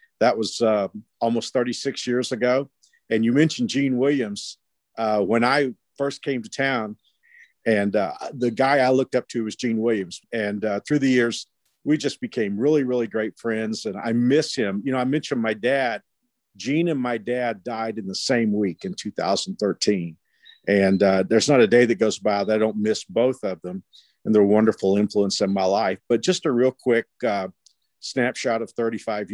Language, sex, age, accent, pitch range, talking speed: English, male, 50-69, American, 110-140 Hz, 195 wpm